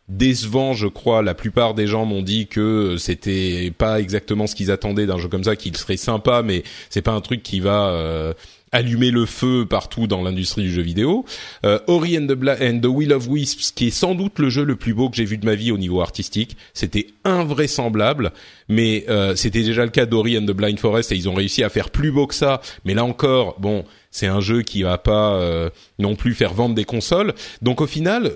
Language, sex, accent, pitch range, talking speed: French, male, French, 105-140 Hz, 235 wpm